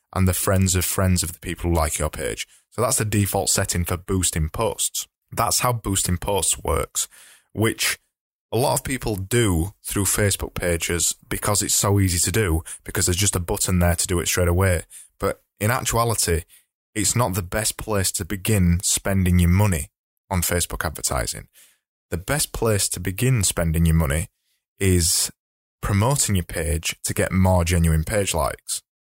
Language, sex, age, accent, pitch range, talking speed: English, male, 20-39, British, 85-105 Hz, 175 wpm